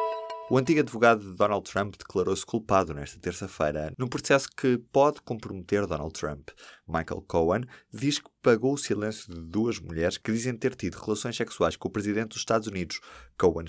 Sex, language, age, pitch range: male, Portuguese, 20-39, 85-110 Hz